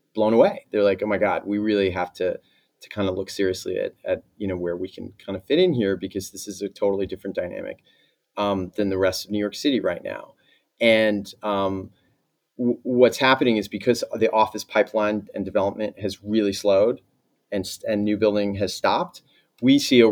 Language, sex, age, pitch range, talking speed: English, male, 30-49, 100-115 Hz, 205 wpm